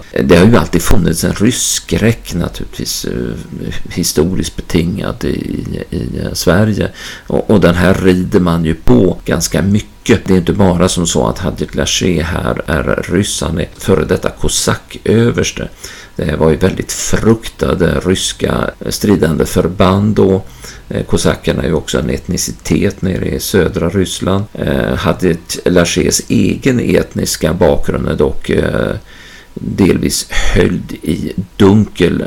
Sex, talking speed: male, 125 wpm